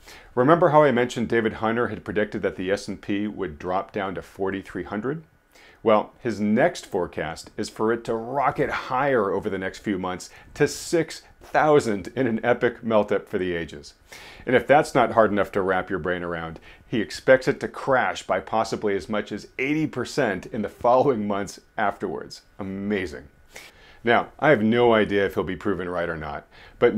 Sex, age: male, 40-59